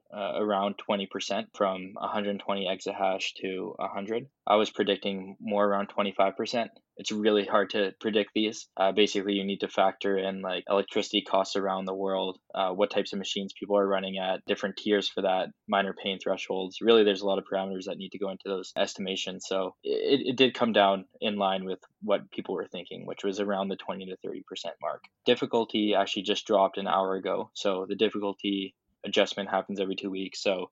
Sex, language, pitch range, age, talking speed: male, English, 95-105 Hz, 10-29, 190 wpm